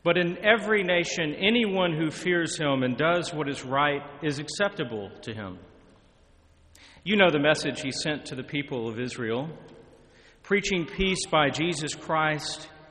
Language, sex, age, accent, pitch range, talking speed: English, male, 40-59, American, 130-175 Hz, 155 wpm